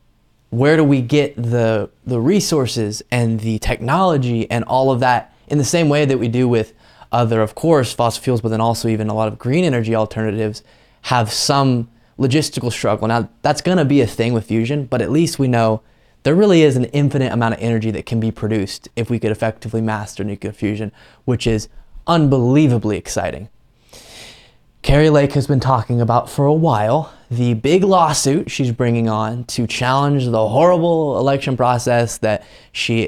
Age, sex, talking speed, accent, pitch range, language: 20-39, male, 185 wpm, American, 110-135 Hz, English